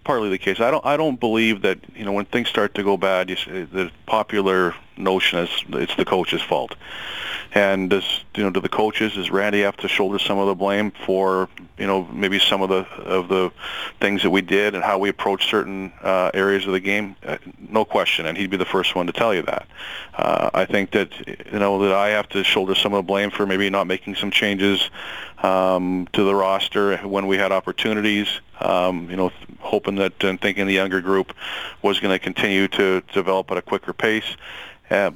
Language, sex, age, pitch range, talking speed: English, male, 40-59, 95-100 Hz, 220 wpm